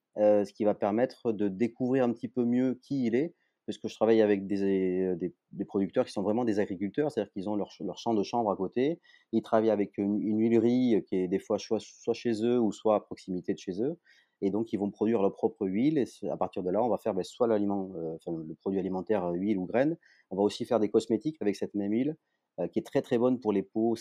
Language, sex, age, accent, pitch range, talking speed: French, male, 30-49, French, 100-115 Hz, 260 wpm